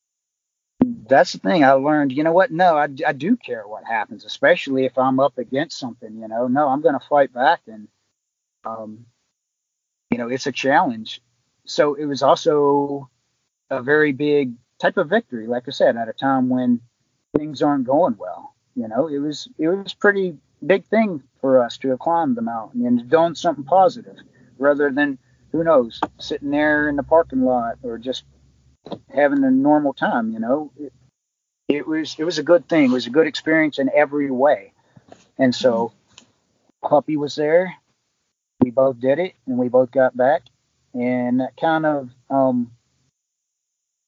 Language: English